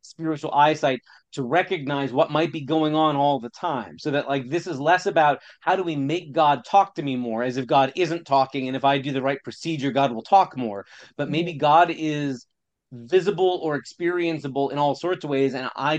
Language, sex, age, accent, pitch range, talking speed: English, male, 30-49, American, 125-150 Hz, 220 wpm